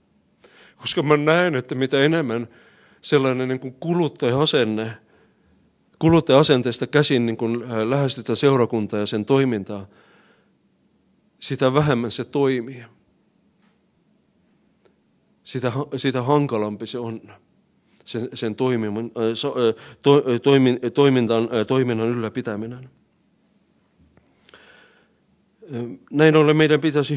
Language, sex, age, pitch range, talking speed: Finnish, male, 40-59, 115-145 Hz, 90 wpm